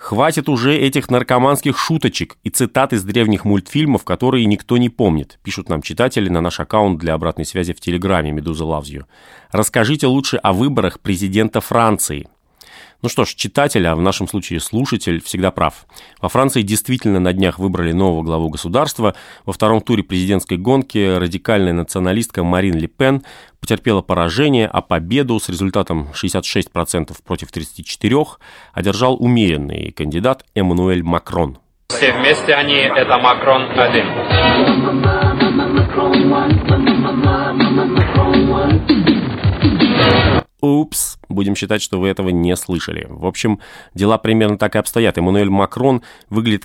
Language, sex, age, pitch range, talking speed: Russian, male, 30-49, 90-120 Hz, 130 wpm